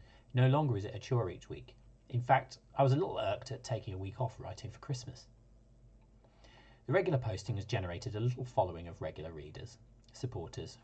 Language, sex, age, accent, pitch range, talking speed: English, male, 40-59, British, 110-125 Hz, 195 wpm